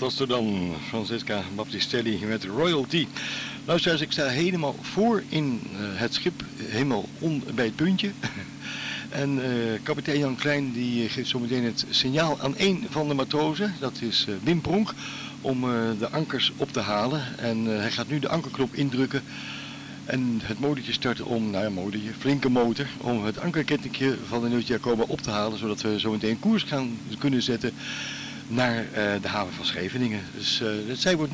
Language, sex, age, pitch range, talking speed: Dutch, male, 60-79, 110-140 Hz, 185 wpm